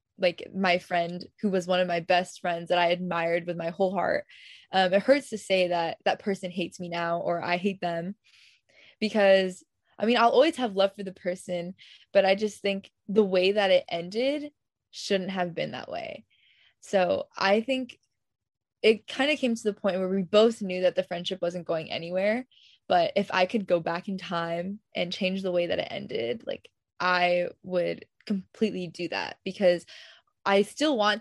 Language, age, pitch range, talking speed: English, 10-29, 175-205 Hz, 195 wpm